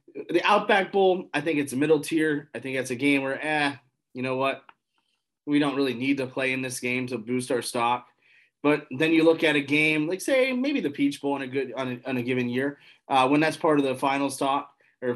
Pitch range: 130-160 Hz